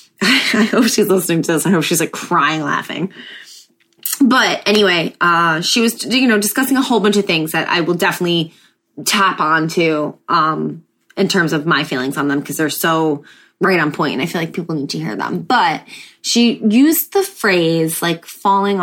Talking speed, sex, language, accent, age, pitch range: 200 wpm, female, English, American, 20-39, 170-220 Hz